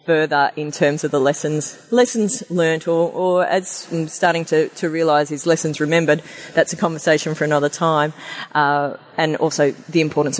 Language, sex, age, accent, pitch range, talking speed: English, female, 30-49, Australian, 155-195 Hz, 175 wpm